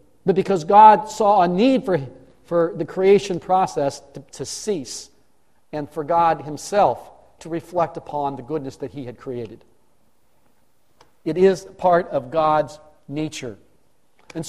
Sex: male